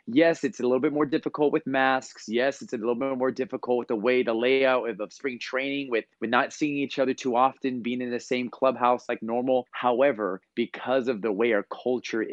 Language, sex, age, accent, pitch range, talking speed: English, male, 30-49, American, 115-140 Hz, 230 wpm